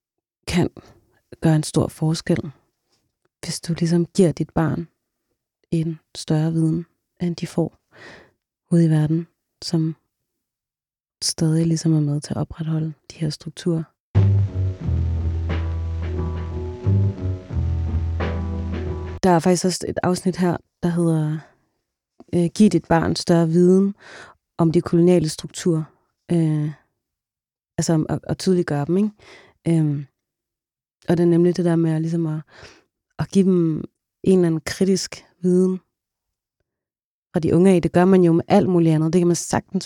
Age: 30-49